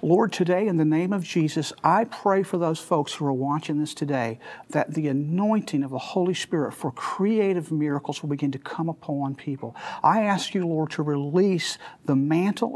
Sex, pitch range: male, 160-210 Hz